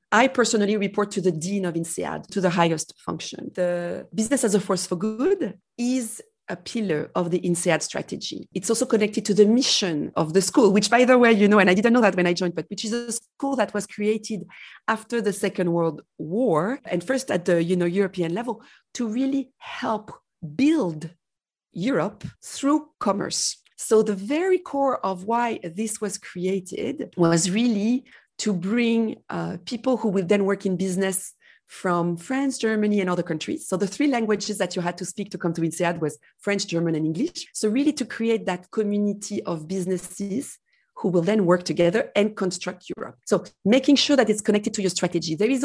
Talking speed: 195 wpm